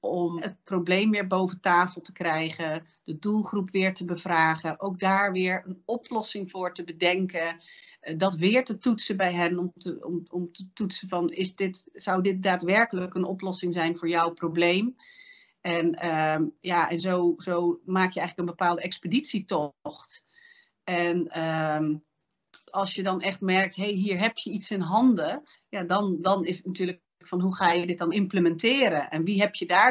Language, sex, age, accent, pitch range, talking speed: Dutch, female, 40-59, Dutch, 175-200 Hz, 180 wpm